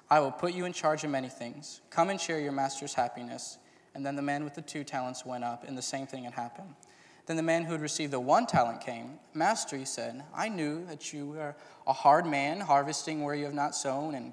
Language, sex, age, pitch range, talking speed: English, male, 10-29, 135-160 Hz, 245 wpm